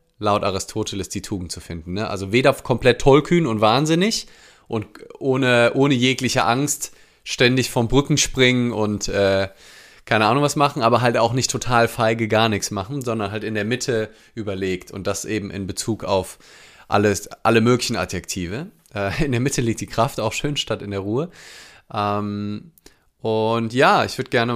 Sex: male